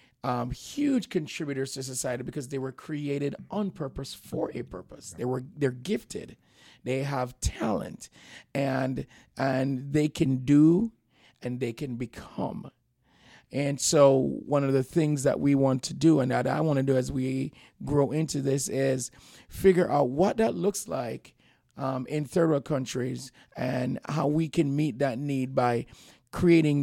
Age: 30-49